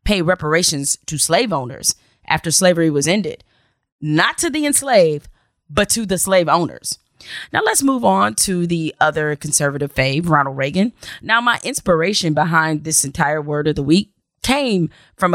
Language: English